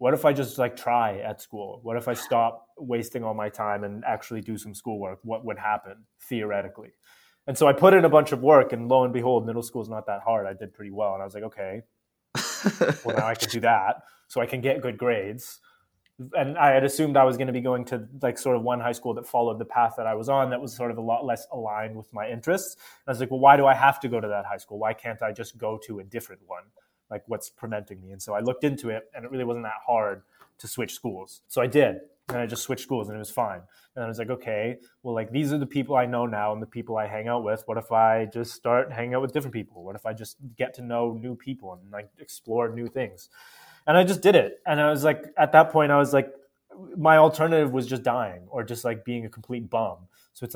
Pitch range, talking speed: 110-135 Hz, 270 wpm